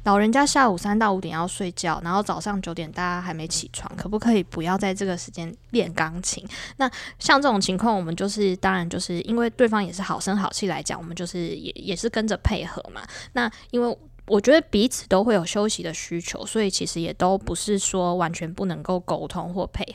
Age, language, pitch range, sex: 20-39, Chinese, 180-225 Hz, female